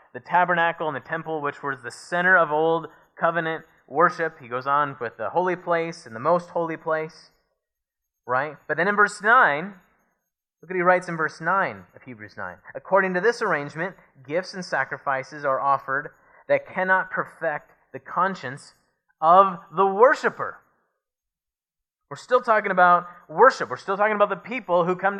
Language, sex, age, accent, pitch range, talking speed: English, male, 30-49, American, 155-200 Hz, 170 wpm